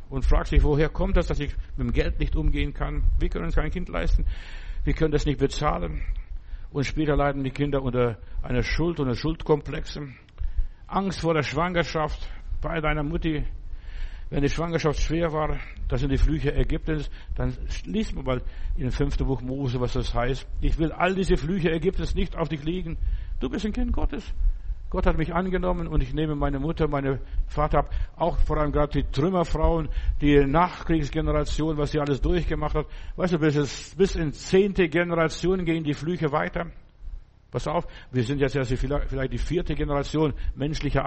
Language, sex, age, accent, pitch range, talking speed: German, male, 60-79, German, 125-160 Hz, 180 wpm